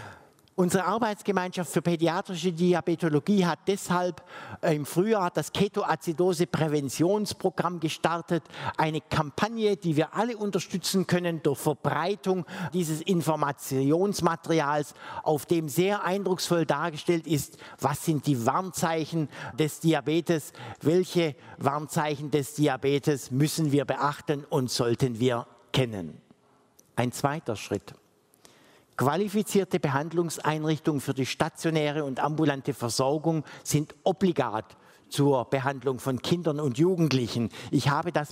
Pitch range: 140-180 Hz